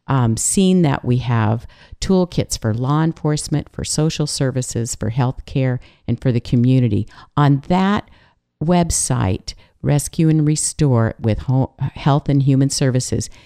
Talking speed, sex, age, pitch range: 140 wpm, female, 50-69, 125-160 Hz